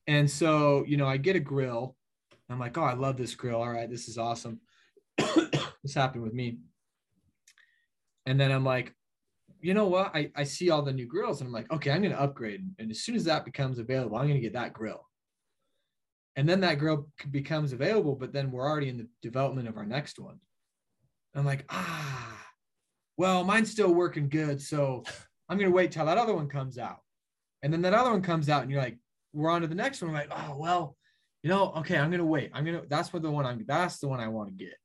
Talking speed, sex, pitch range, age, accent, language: 230 wpm, male, 120-160 Hz, 20-39, American, English